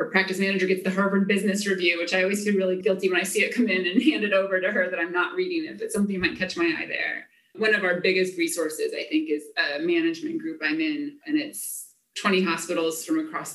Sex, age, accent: female, 30-49, American